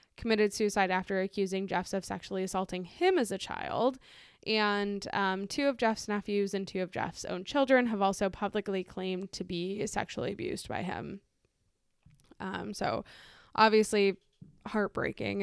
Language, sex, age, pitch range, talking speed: English, female, 10-29, 190-220 Hz, 150 wpm